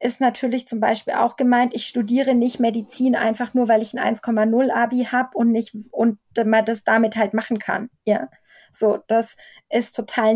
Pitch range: 225-260 Hz